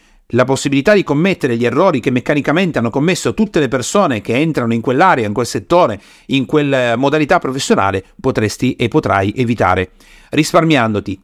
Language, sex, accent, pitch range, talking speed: Italian, male, native, 125-190 Hz, 155 wpm